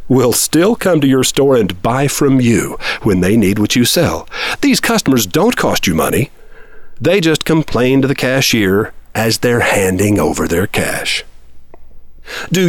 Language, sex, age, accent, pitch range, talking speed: English, male, 50-69, American, 105-165 Hz, 165 wpm